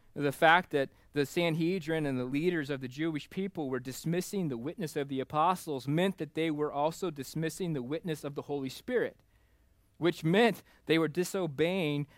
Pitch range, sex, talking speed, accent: 125-160 Hz, male, 175 wpm, American